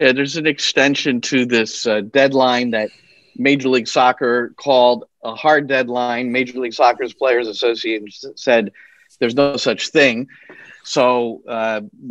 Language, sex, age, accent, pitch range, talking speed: English, male, 40-59, American, 115-145 Hz, 140 wpm